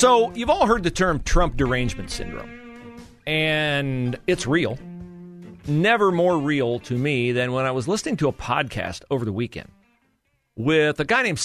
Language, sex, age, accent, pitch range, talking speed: English, male, 40-59, American, 105-150 Hz, 170 wpm